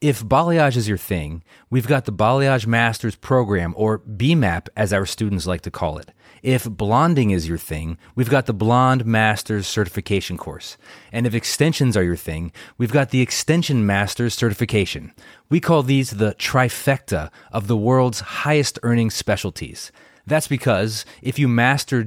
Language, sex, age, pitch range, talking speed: English, male, 30-49, 105-135 Hz, 165 wpm